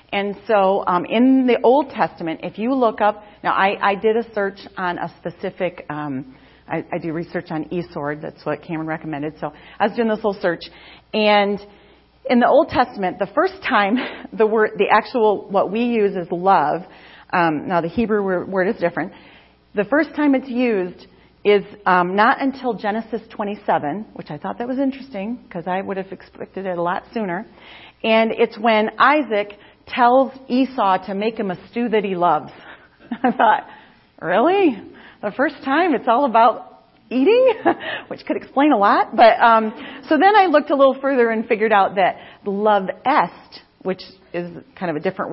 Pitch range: 185-250 Hz